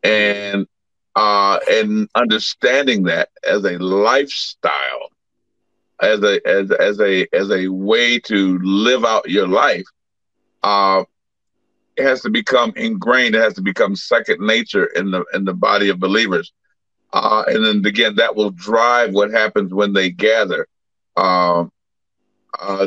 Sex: male